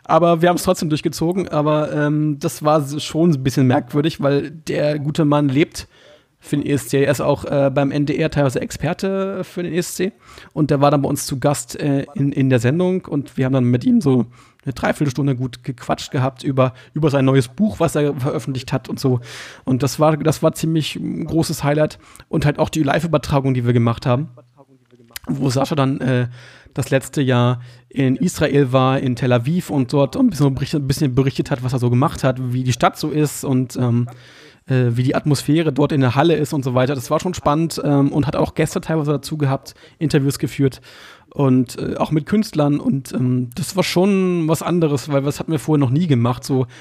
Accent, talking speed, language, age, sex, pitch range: German, 215 wpm, German, 40-59, male, 130-155 Hz